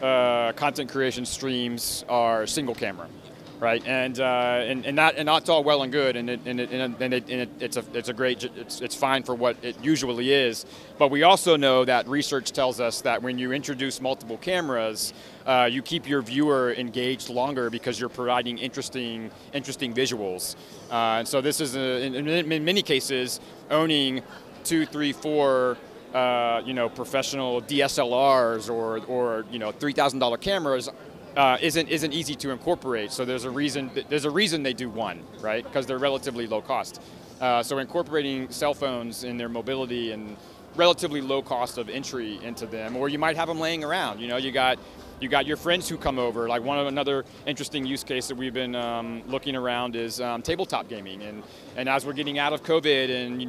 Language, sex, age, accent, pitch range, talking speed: English, male, 30-49, American, 120-140 Hz, 200 wpm